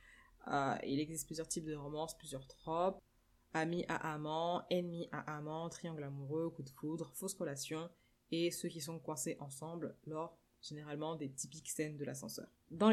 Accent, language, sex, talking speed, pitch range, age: French, French, female, 165 wpm, 140-175 Hz, 20-39